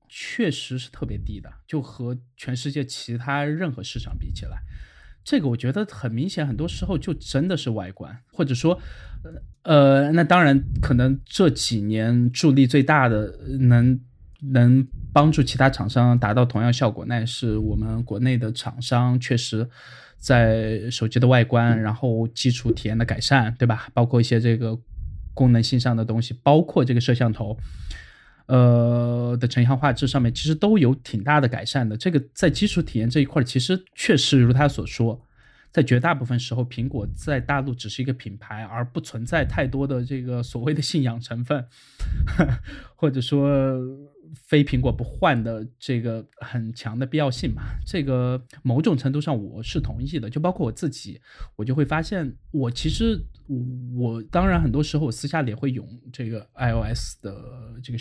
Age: 20-39